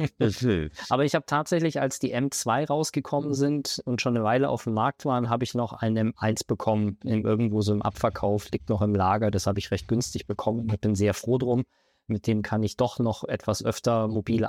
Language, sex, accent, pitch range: German, male, German, 105-125 Hz